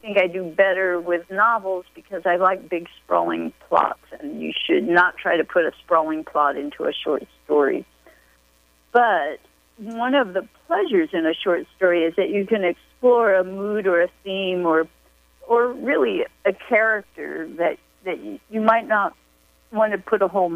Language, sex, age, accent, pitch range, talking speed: English, female, 50-69, American, 165-225 Hz, 180 wpm